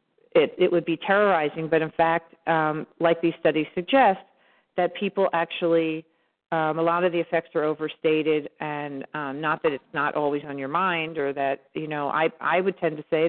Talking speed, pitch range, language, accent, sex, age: 200 wpm, 155-180 Hz, English, American, female, 40-59